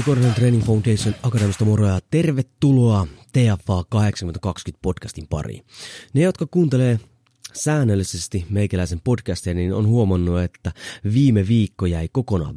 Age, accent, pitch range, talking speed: 30-49, native, 95-125 Hz, 115 wpm